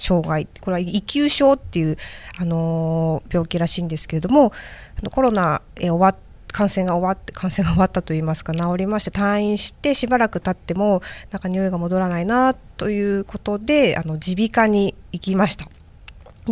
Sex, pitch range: female, 170-235 Hz